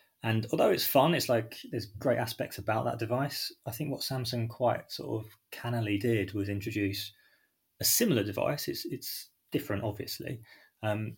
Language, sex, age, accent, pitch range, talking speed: English, male, 20-39, British, 100-120 Hz, 165 wpm